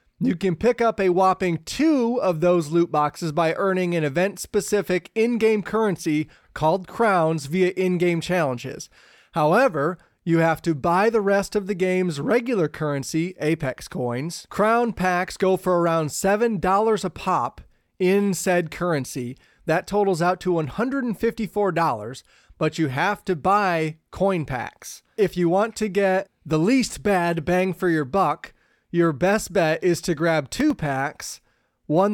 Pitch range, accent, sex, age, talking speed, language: 165-205 Hz, American, male, 30-49, 150 wpm, English